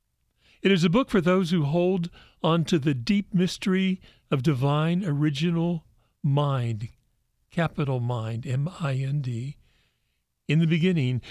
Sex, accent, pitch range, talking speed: male, American, 130-180 Hz, 120 wpm